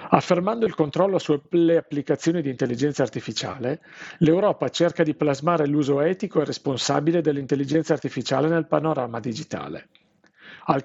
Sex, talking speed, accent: male, 120 wpm, native